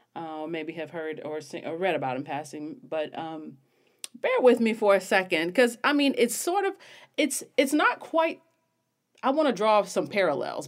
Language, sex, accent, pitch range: English, female, American, 145-215 Hz